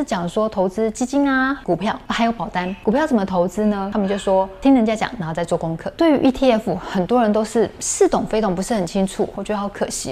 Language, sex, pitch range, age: Chinese, female, 185-230 Hz, 20-39